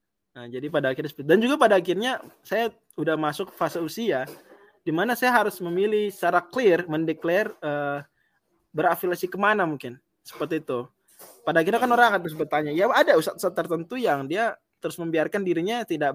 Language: Indonesian